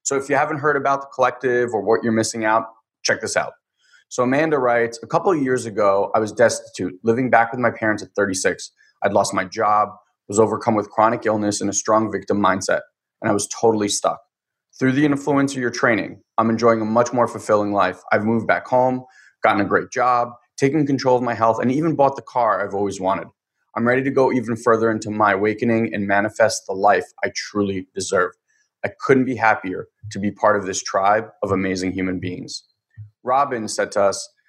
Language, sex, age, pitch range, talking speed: English, male, 20-39, 110-130 Hz, 210 wpm